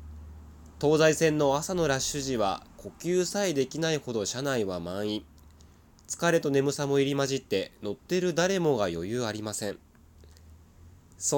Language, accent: Japanese, native